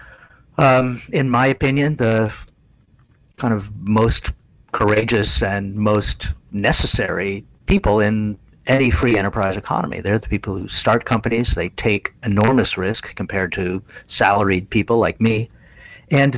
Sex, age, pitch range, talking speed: male, 50-69, 95-120 Hz, 130 wpm